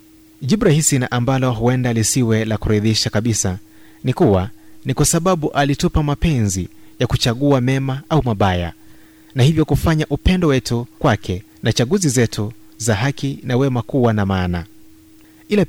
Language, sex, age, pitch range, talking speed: Swahili, male, 30-49, 105-145 Hz, 140 wpm